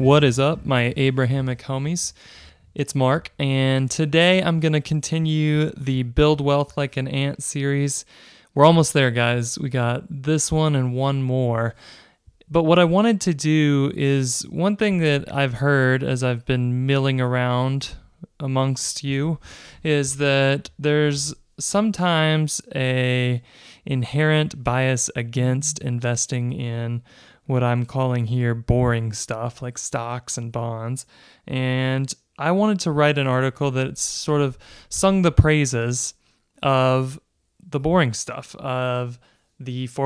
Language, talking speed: English, 135 wpm